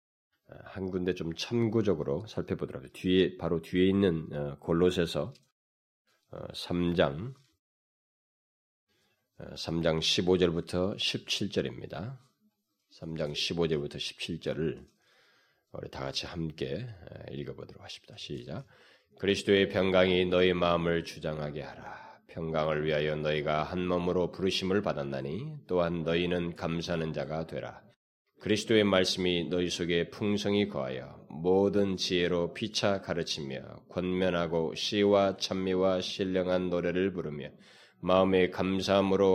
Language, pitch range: Korean, 85-100 Hz